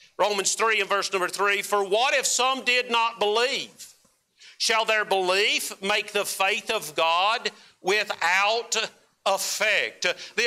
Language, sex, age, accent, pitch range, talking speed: English, male, 50-69, American, 205-245 Hz, 130 wpm